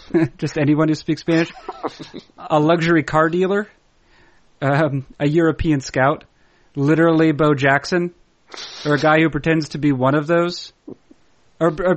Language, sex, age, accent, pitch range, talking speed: English, male, 40-59, American, 135-165 Hz, 135 wpm